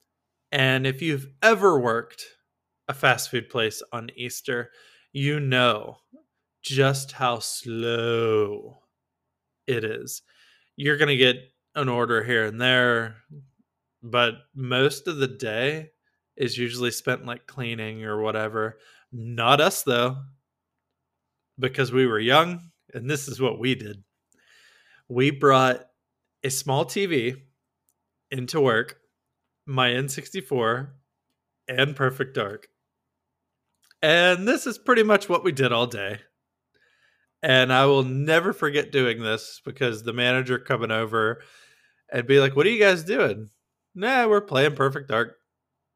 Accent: American